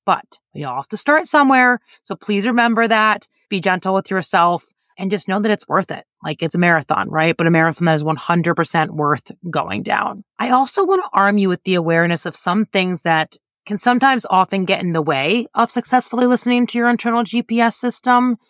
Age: 20-39